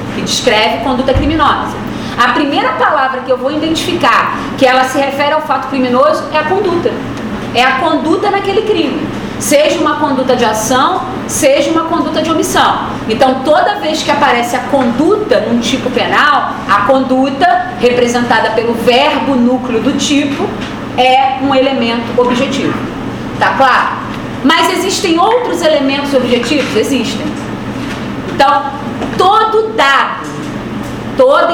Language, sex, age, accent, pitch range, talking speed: English, female, 40-59, Brazilian, 250-310 Hz, 135 wpm